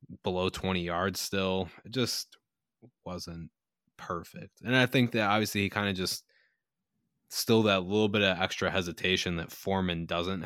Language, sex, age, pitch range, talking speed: English, male, 20-39, 85-100 Hz, 155 wpm